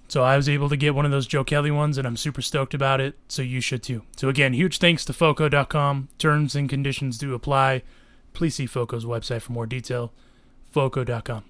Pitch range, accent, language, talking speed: 125-155 Hz, American, English, 215 wpm